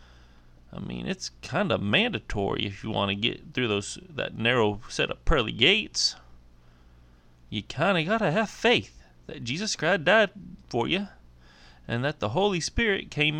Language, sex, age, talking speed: English, male, 30-49, 165 wpm